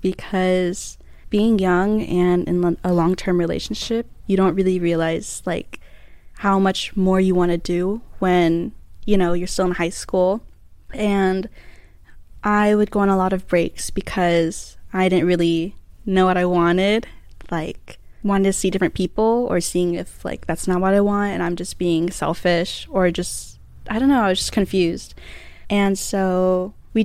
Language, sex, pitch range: English, female, 175-205 Hz